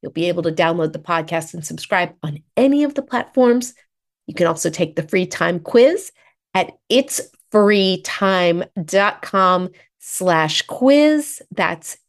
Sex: female